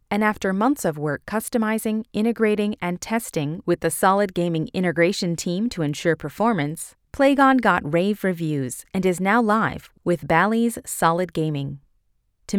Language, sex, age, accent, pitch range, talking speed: English, female, 30-49, American, 155-220 Hz, 150 wpm